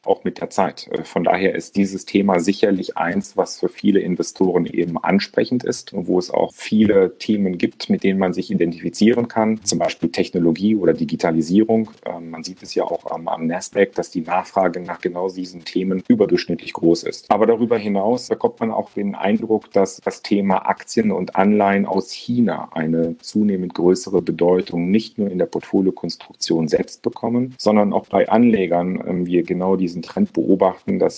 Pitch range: 90-105 Hz